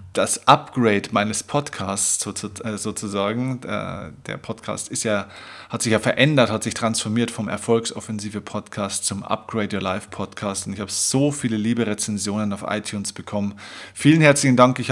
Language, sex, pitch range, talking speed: German, male, 105-125 Hz, 135 wpm